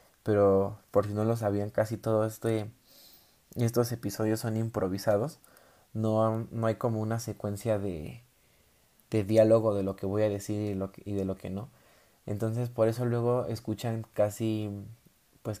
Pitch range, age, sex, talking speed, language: 100-110 Hz, 20-39, male, 165 wpm, Spanish